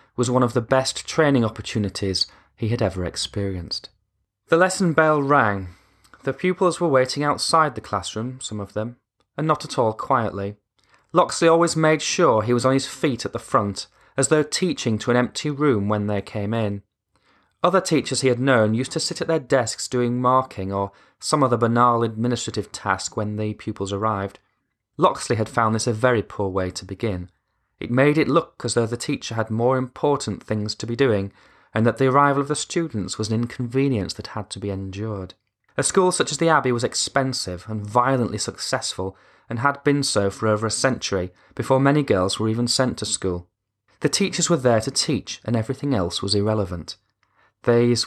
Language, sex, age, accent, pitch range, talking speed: English, male, 20-39, British, 105-135 Hz, 195 wpm